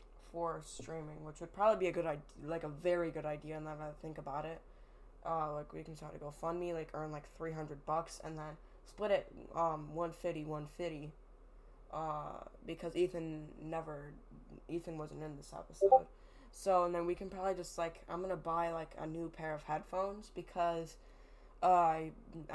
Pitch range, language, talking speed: 155-175 Hz, English, 180 wpm